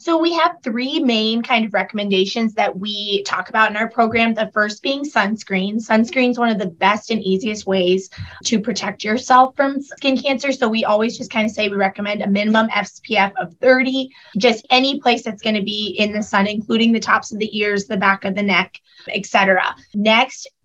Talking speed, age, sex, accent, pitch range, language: 210 wpm, 20-39, female, American, 205-245 Hz, English